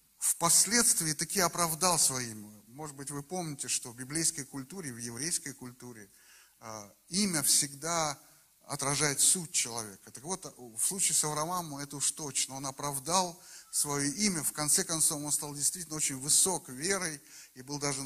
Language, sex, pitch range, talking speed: Russian, male, 130-165 Hz, 155 wpm